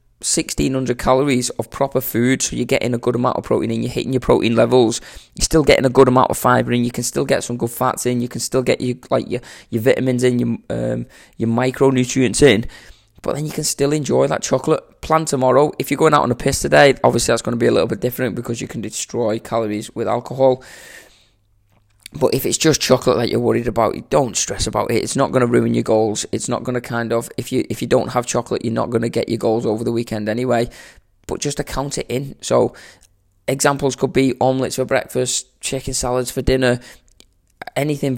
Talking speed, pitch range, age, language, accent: 230 wpm, 115-135 Hz, 20-39, English, British